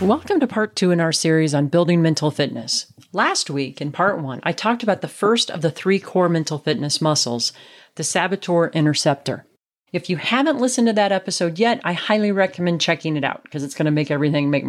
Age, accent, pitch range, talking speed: 40-59, American, 150-205 Hz, 215 wpm